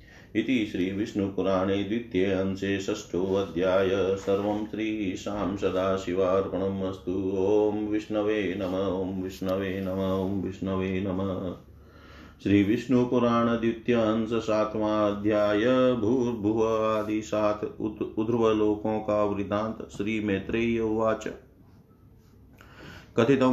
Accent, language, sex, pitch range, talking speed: native, Hindi, male, 95-110 Hz, 75 wpm